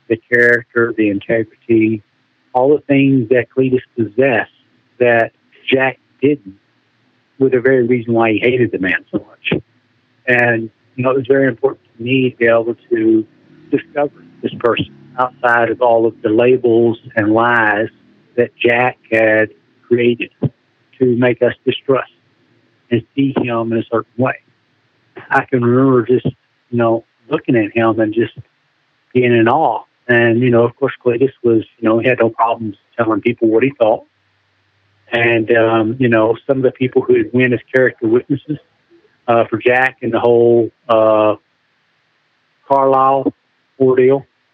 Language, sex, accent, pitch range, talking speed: English, male, American, 115-130 Hz, 160 wpm